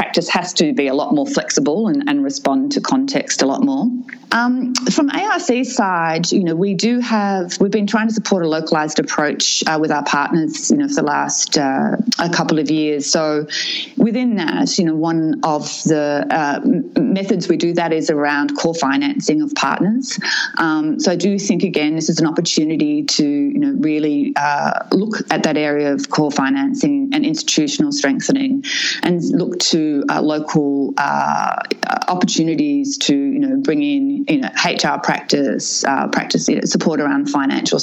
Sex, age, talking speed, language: female, 30-49, 180 wpm, English